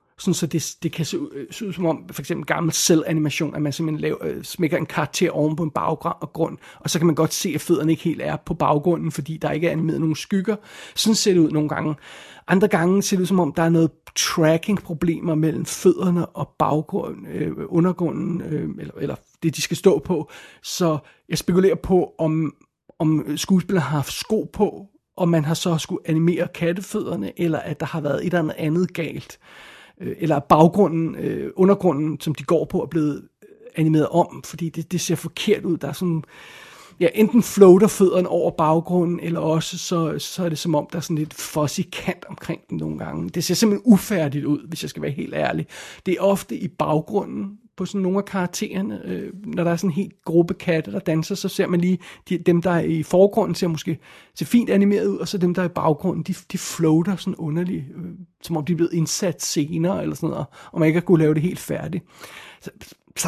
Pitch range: 155-185 Hz